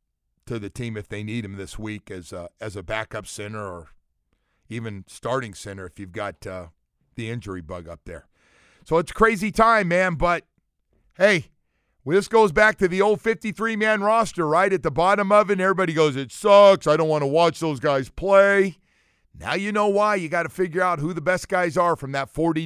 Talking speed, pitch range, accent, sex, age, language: 215 wpm, 110-165 Hz, American, male, 50-69, English